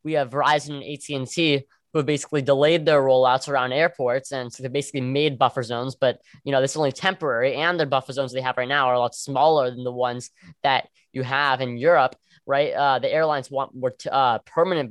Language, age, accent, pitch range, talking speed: English, 10-29, American, 130-155 Hz, 220 wpm